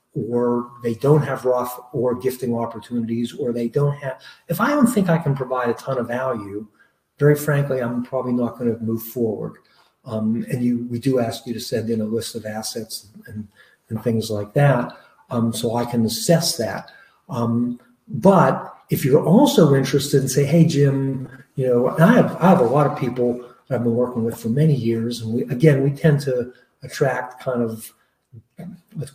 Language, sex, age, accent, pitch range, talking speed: English, male, 50-69, American, 115-140 Hz, 200 wpm